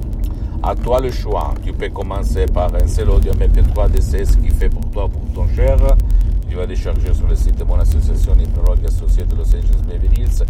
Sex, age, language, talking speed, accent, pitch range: male, 60-79, Italian, 215 wpm, native, 80-95 Hz